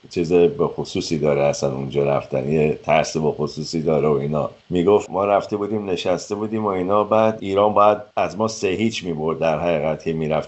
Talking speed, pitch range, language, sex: 185 wpm, 95-140 Hz, Persian, male